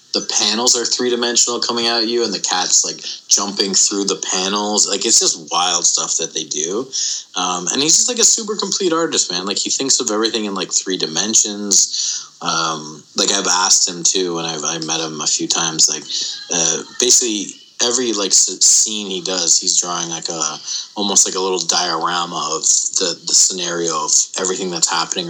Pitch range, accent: 85-115 Hz, American